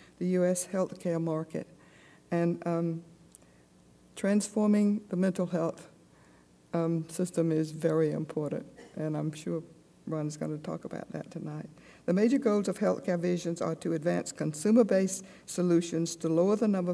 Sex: female